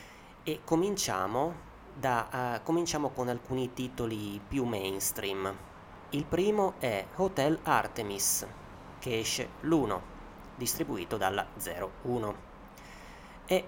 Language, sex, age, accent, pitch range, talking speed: Italian, male, 30-49, native, 100-135 Hz, 95 wpm